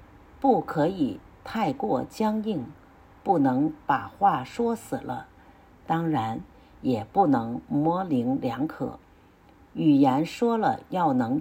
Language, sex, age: Chinese, female, 50-69